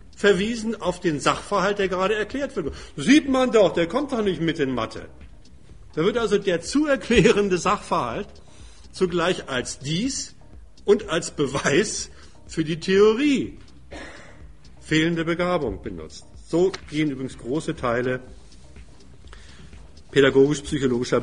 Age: 50-69